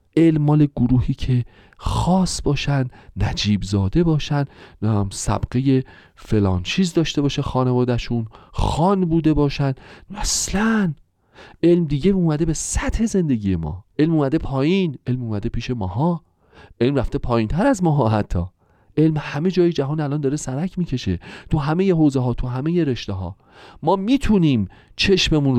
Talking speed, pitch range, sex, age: 145 wpm, 105-175 Hz, male, 40-59